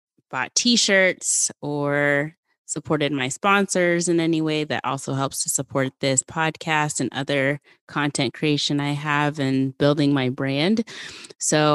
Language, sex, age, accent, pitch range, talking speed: English, female, 20-39, American, 145-170 Hz, 140 wpm